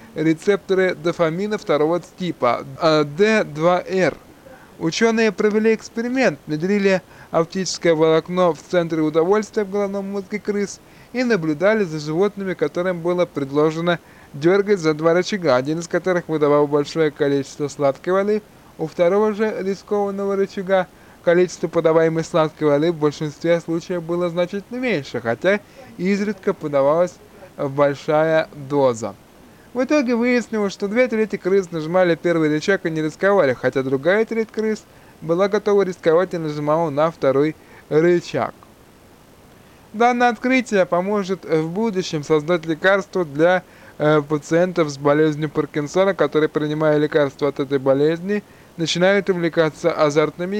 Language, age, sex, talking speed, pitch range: Russian, 20-39, male, 125 wpm, 155-200 Hz